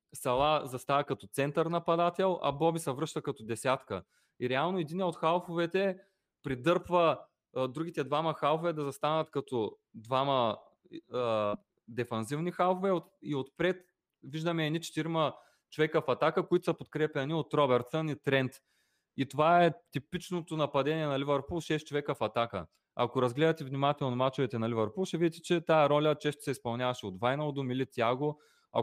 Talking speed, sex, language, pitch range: 150 wpm, male, Bulgarian, 130-165 Hz